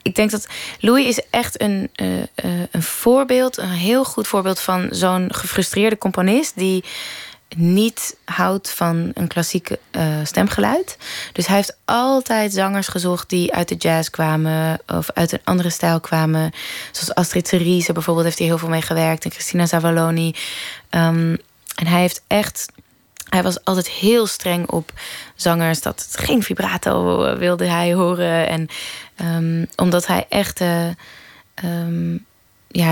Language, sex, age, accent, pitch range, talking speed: Dutch, female, 20-39, Dutch, 165-190 Hz, 145 wpm